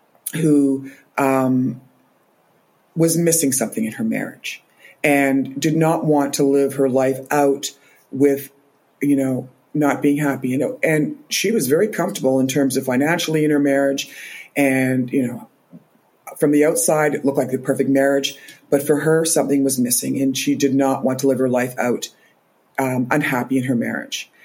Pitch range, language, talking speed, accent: 130-155 Hz, English, 170 wpm, American